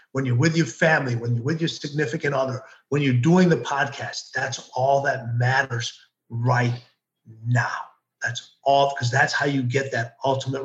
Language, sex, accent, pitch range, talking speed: English, male, American, 125-150 Hz, 175 wpm